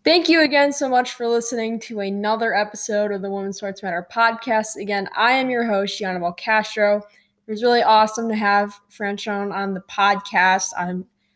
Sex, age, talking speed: female, 10-29, 180 wpm